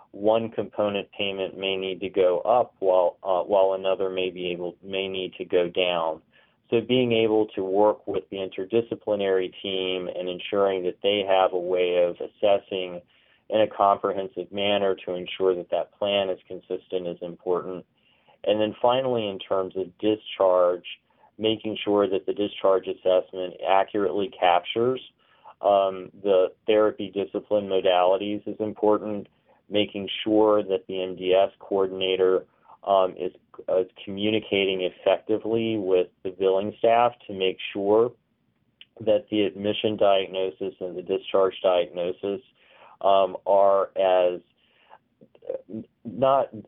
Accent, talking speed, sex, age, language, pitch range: American, 130 wpm, male, 40-59, English, 95-105 Hz